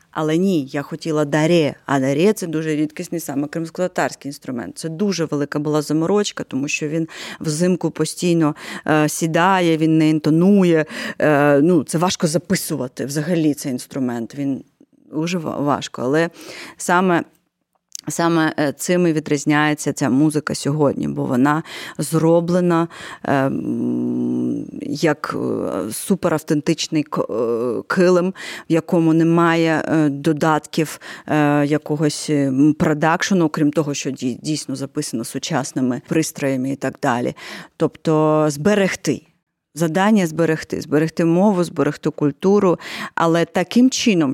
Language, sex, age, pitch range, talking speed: Ukrainian, female, 30-49, 150-170 Hz, 110 wpm